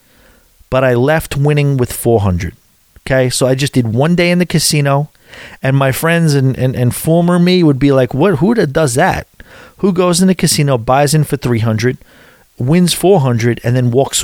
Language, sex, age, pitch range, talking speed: English, male, 40-59, 115-155 Hz, 190 wpm